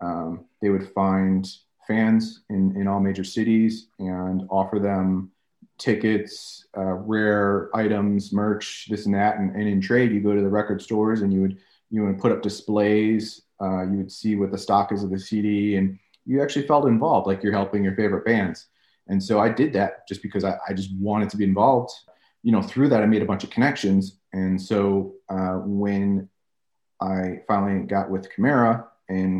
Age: 30-49